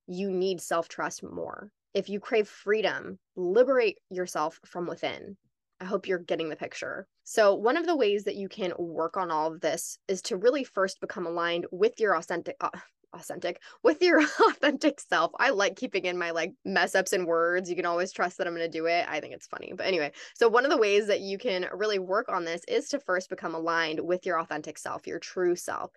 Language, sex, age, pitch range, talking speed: English, female, 20-39, 170-215 Hz, 220 wpm